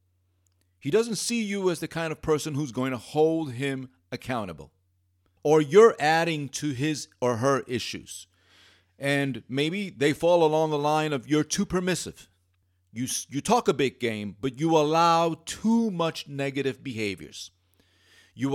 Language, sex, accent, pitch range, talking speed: English, male, American, 100-165 Hz, 155 wpm